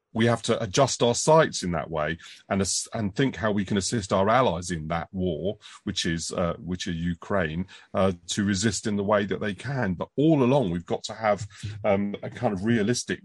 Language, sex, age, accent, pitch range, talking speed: English, male, 40-59, British, 95-120 Hz, 215 wpm